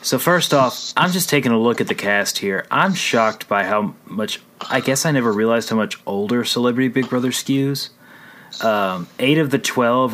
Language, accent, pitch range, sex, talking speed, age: English, American, 110-145 Hz, male, 200 wpm, 30-49